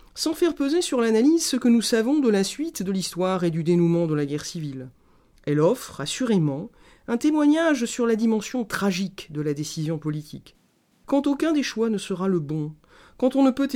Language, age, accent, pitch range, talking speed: French, 40-59, French, 165-235 Hz, 200 wpm